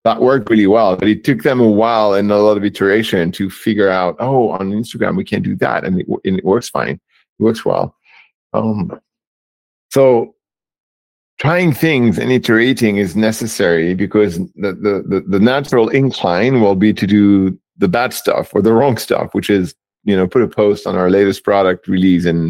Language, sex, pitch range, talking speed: English, male, 90-110 Hz, 190 wpm